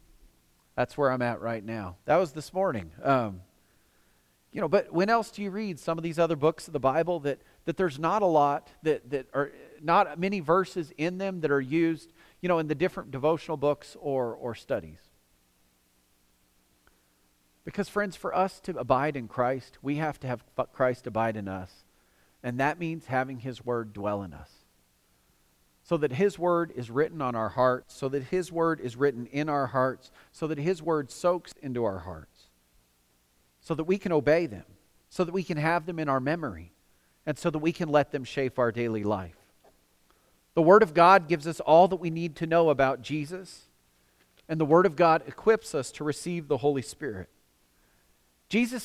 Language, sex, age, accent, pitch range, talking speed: English, male, 40-59, American, 110-170 Hz, 195 wpm